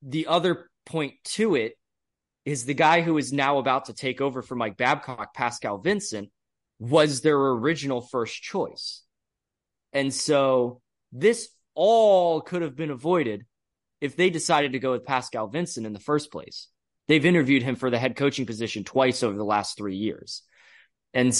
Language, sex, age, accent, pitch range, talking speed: English, male, 20-39, American, 110-140 Hz, 170 wpm